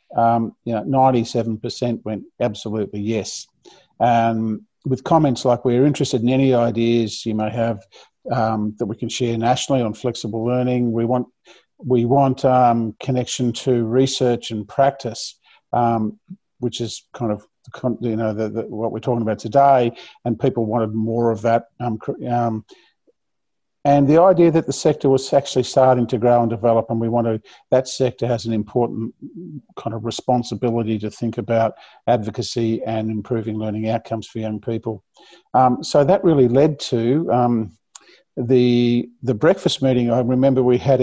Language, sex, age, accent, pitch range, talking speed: English, male, 50-69, Australian, 115-135 Hz, 160 wpm